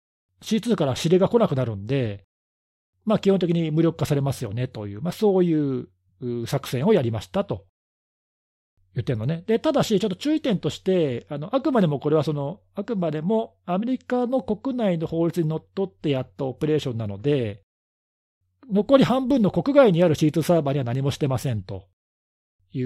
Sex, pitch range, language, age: male, 125-185 Hz, Japanese, 40-59